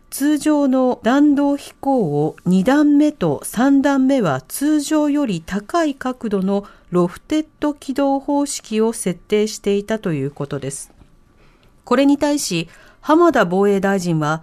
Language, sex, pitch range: Japanese, female, 185-275 Hz